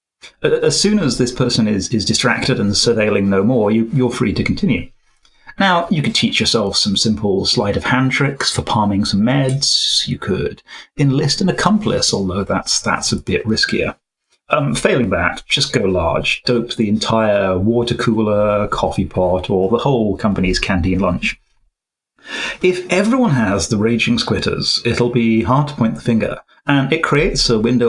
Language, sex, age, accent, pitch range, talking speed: English, male, 30-49, British, 105-130 Hz, 175 wpm